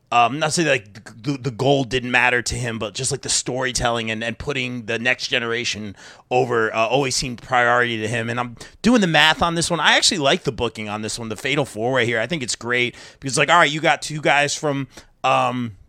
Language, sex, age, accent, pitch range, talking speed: English, male, 30-49, American, 120-155 Hz, 250 wpm